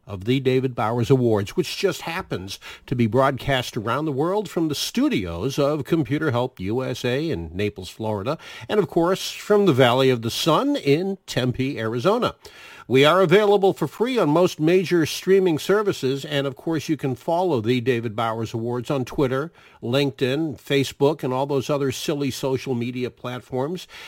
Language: English